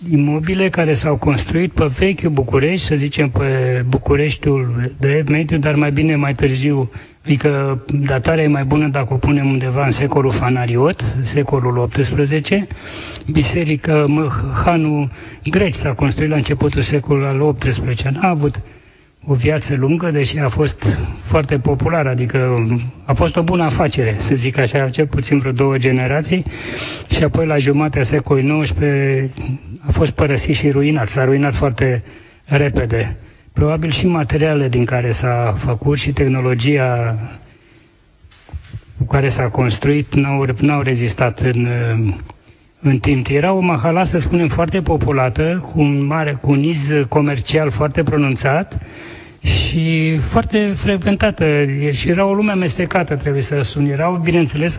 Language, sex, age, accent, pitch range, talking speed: Romanian, male, 30-49, native, 125-155 Hz, 140 wpm